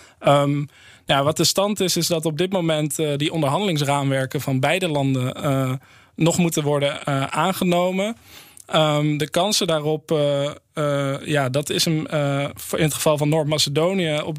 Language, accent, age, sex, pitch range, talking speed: Dutch, Dutch, 20-39, male, 145-165 Hz, 165 wpm